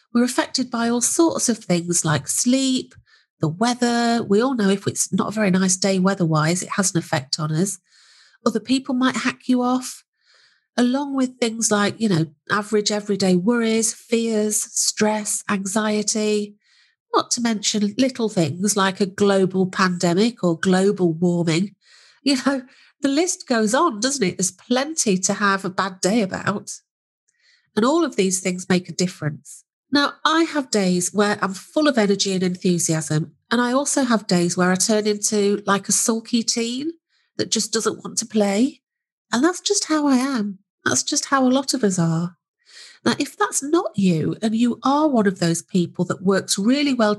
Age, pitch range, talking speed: 40-59, 190-250 Hz, 180 wpm